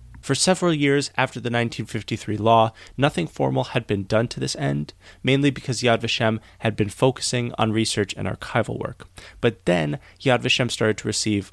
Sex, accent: male, American